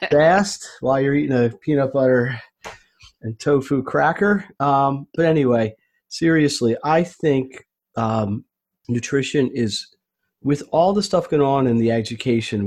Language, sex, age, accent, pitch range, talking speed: English, male, 40-59, American, 110-140 Hz, 135 wpm